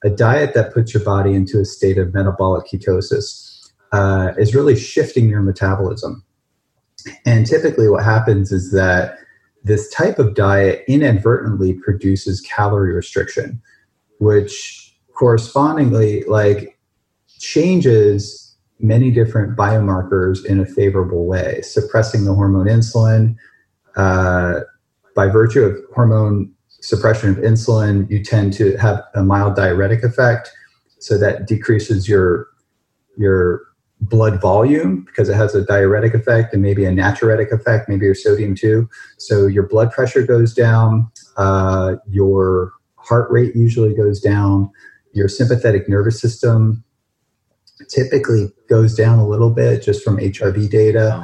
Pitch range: 100-115 Hz